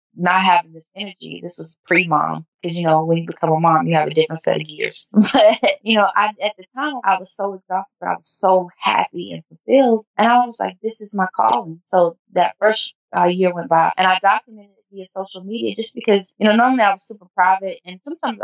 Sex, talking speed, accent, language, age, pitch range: female, 230 wpm, American, English, 20-39, 170-200 Hz